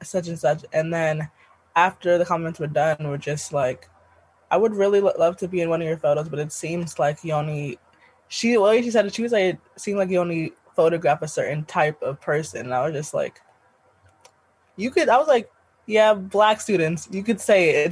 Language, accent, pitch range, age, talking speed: English, American, 150-190 Hz, 20-39, 225 wpm